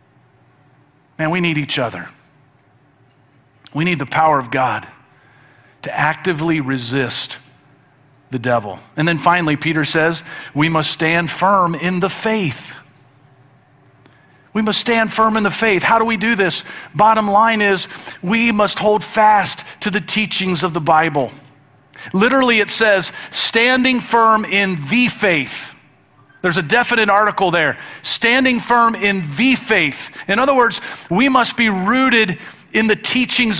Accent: American